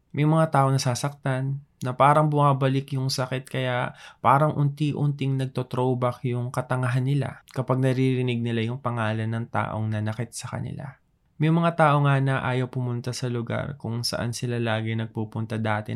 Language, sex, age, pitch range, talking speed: Filipino, male, 20-39, 115-135 Hz, 155 wpm